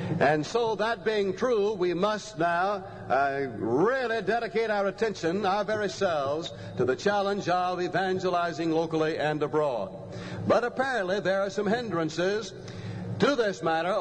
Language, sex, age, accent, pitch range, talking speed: English, male, 60-79, American, 165-210 Hz, 140 wpm